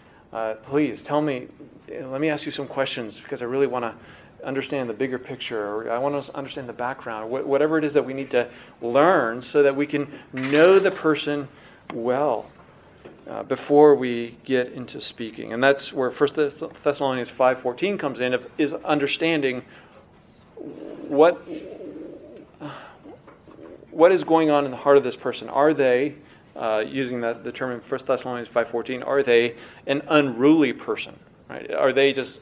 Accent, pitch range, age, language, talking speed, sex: American, 125-145 Hz, 40-59, English, 170 wpm, male